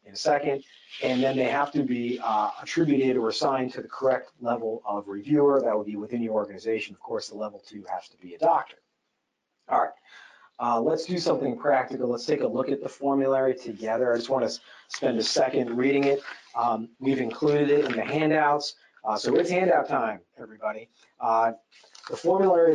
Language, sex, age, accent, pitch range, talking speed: English, male, 40-59, American, 125-150 Hz, 200 wpm